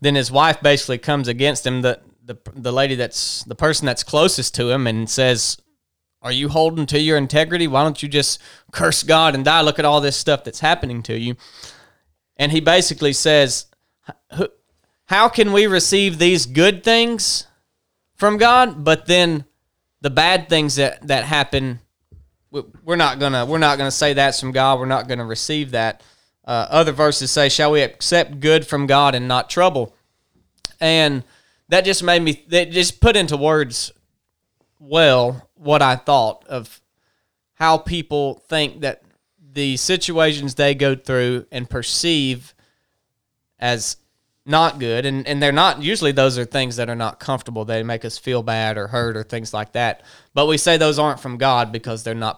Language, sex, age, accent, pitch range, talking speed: English, male, 20-39, American, 125-155 Hz, 175 wpm